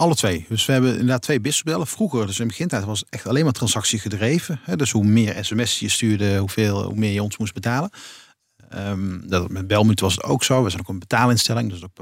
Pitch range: 100-125 Hz